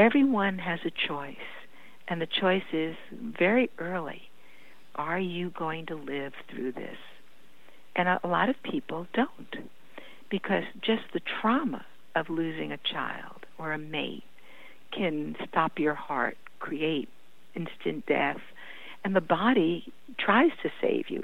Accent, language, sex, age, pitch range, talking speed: American, English, female, 60-79, 160-225 Hz, 140 wpm